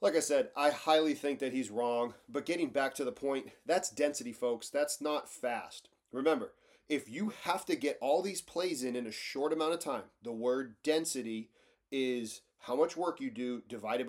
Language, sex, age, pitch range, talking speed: English, male, 30-49, 125-165 Hz, 200 wpm